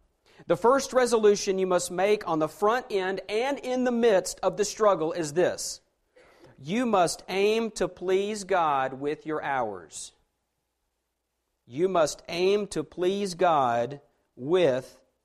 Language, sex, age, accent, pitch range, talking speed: English, male, 50-69, American, 145-190 Hz, 140 wpm